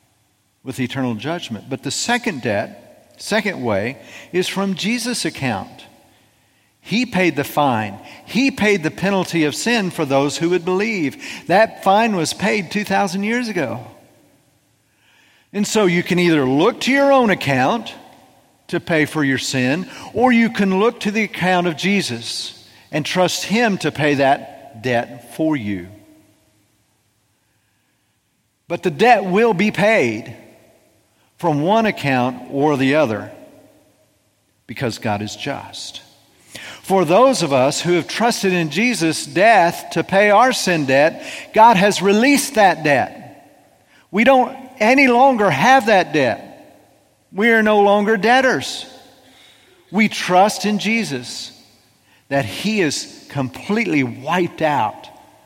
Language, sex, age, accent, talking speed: English, male, 50-69, American, 135 wpm